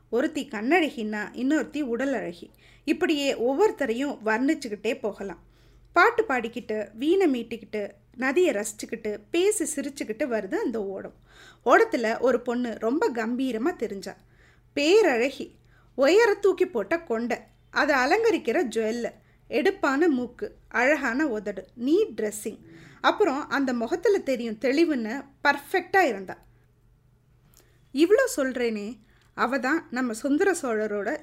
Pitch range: 230-335 Hz